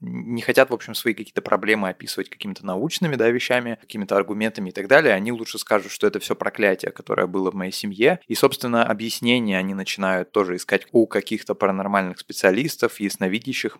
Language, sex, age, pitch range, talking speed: Russian, male, 20-39, 95-110 Hz, 180 wpm